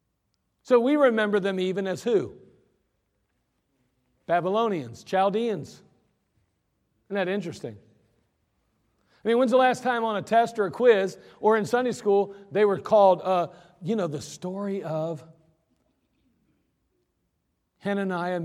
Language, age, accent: English, 40-59, American